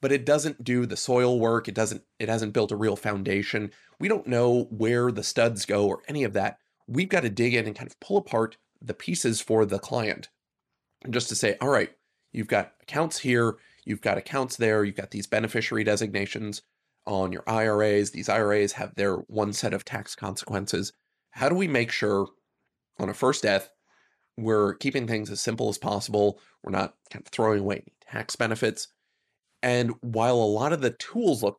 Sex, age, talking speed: male, 30-49, 200 wpm